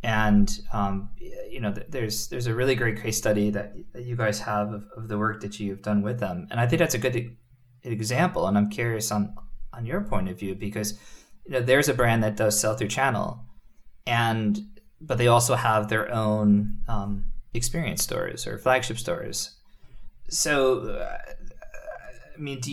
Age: 20-39